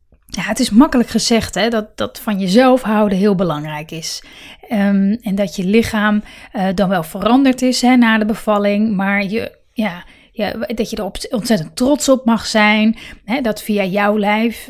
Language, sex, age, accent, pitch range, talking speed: Dutch, female, 30-49, Dutch, 210-255 Hz, 185 wpm